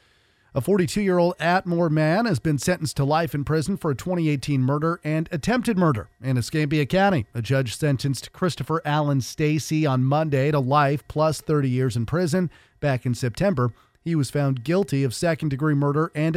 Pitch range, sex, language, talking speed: 125-155 Hz, male, English, 170 wpm